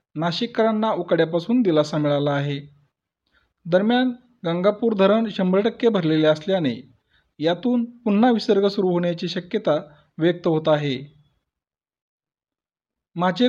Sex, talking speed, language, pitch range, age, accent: male, 100 wpm, Marathi, 160-220 Hz, 40-59, native